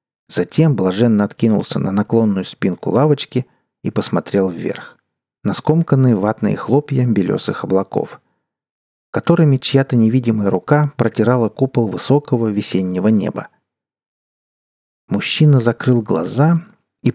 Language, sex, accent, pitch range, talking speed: Russian, male, native, 105-145 Hz, 100 wpm